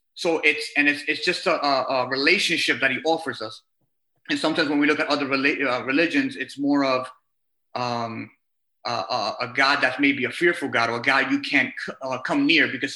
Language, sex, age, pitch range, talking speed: English, male, 30-49, 135-165 Hz, 210 wpm